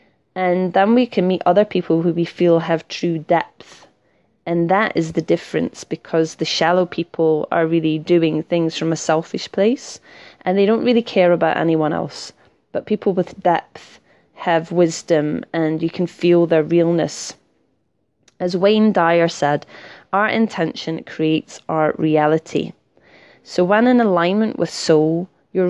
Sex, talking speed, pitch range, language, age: female, 155 wpm, 165-195 Hz, English, 20-39